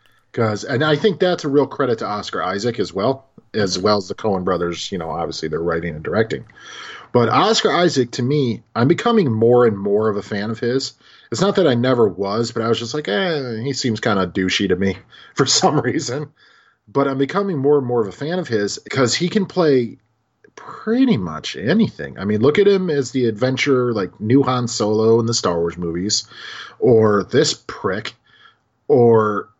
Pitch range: 100-130 Hz